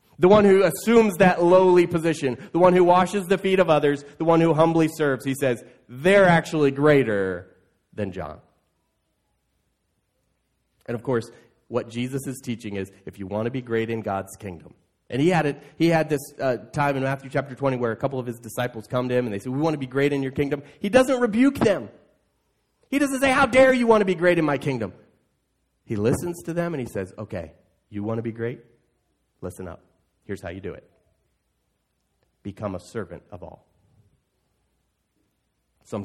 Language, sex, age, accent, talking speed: English, male, 30-49, American, 200 wpm